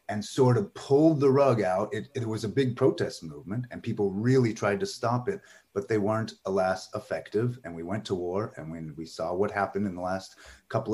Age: 30-49